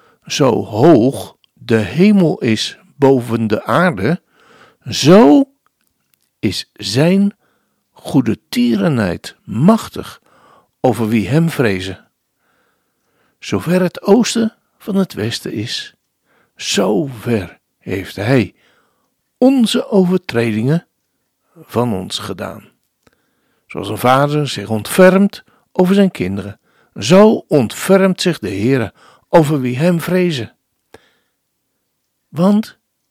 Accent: Dutch